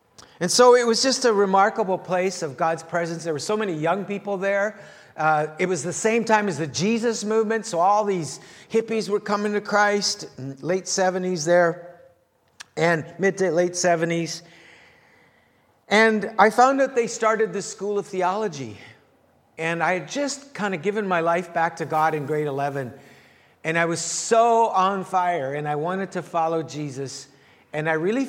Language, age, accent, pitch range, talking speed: English, 50-69, American, 160-205 Hz, 180 wpm